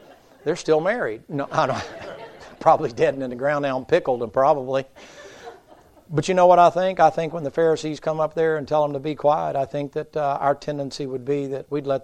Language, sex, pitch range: English, male, 130-150 Hz